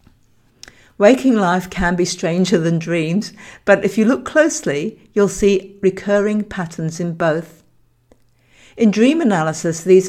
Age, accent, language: 60-79, British, English